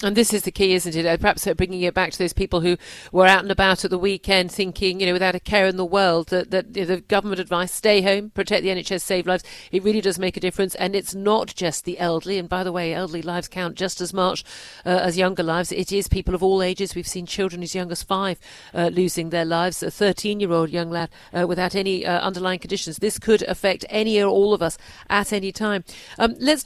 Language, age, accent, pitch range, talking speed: English, 50-69, British, 180-200 Hz, 245 wpm